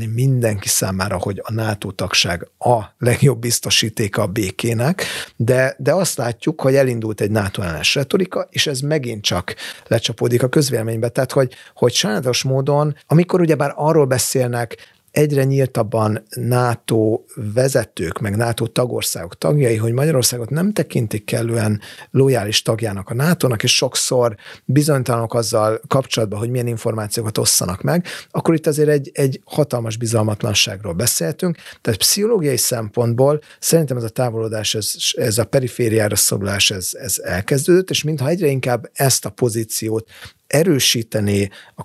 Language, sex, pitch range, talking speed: Hungarian, male, 110-145 Hz, 135 wpm